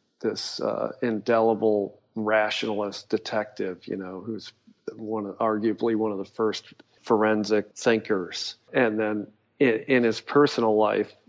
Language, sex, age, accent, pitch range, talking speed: English, male, 50-69, American, 105-120 Hz, 120 wpm